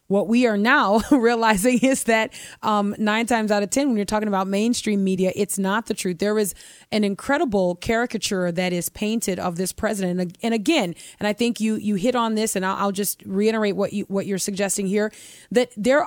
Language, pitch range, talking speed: English, 195-235 Hz, 215 wpm